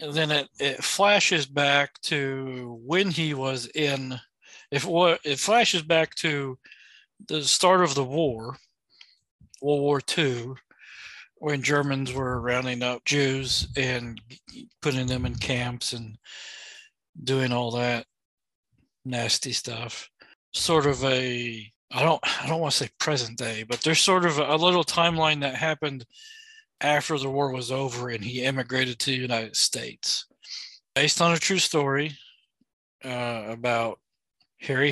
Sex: male